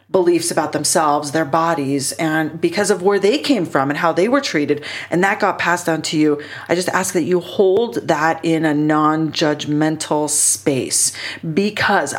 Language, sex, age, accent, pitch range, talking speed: English, female, 30-49, American, 155-190 Hz, 175 wpm